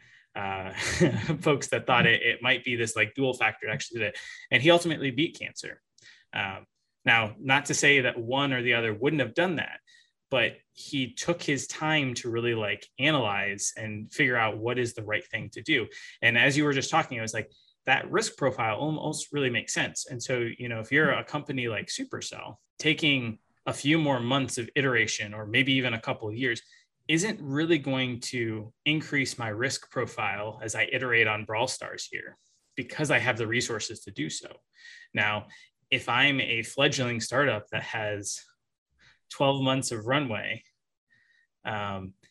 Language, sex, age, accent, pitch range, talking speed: English, male, 20-39, American, 110-140 Hz, 185 wpm